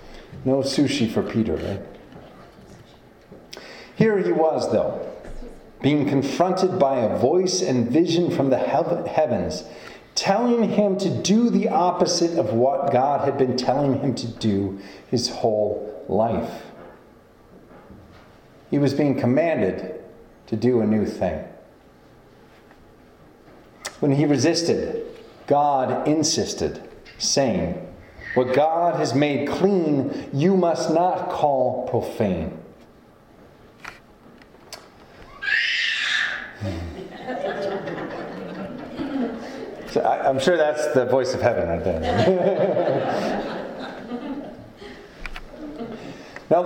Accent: American